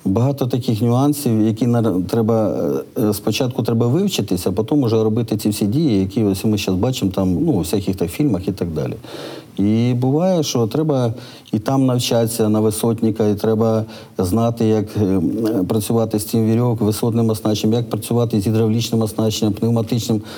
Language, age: Ukrainian, 50-69